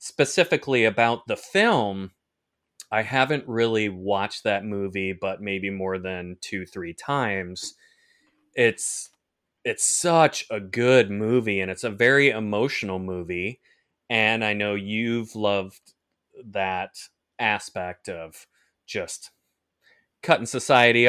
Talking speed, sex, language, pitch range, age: 115 wpm, male, English, 100-120 Hz, 30-49